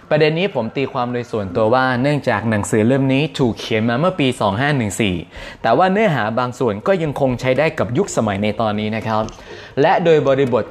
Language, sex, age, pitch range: Thai, male, 20-39, 110-145 Hz